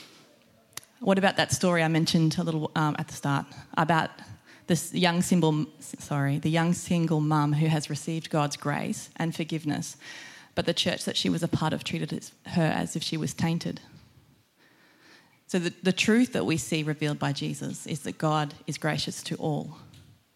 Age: 20-39